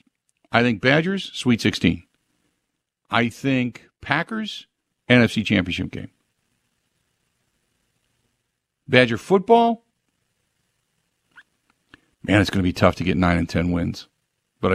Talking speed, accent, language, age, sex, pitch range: 105 wpm, American, English, 50-69, male, 95-115 Hz